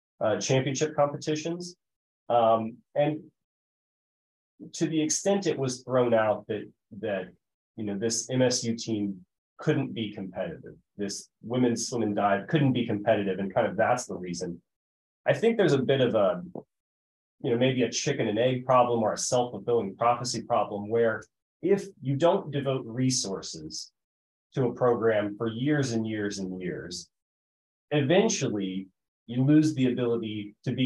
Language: English